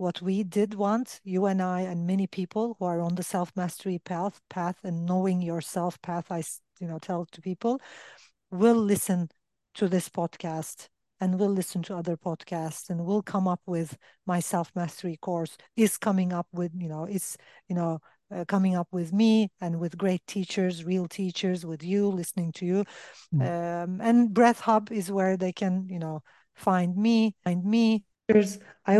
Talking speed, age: 185 wpm, 40-59